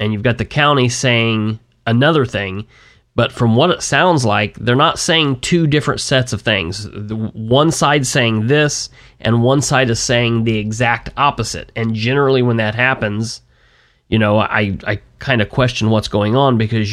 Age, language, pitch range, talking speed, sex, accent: 30-49, English, 105-125 Hz, 180 wpm, male, American